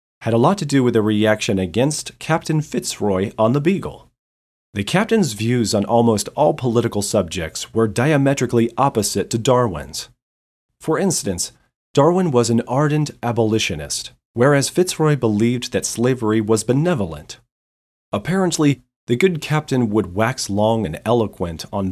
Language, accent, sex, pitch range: English, American, male, 105-140 Hz